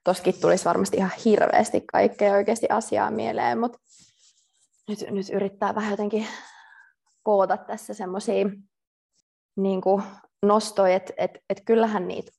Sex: female